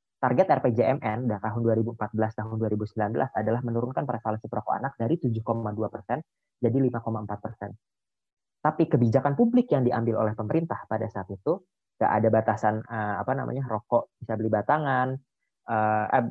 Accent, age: native, 20-39